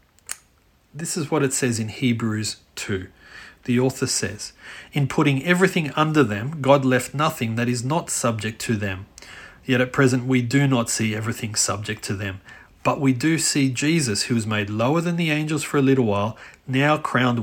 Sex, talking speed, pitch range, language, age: male, 185 wpm, 110-135 Hz, English, 40-59